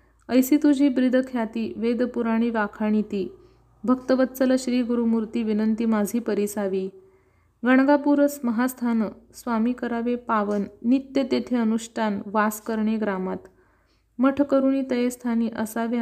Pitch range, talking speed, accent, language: 215-250 Hz, 115 wpm, native, Marathi